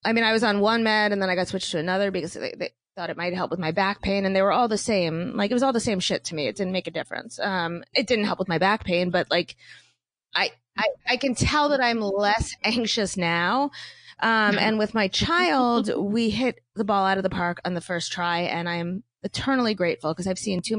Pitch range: 170-225 Hz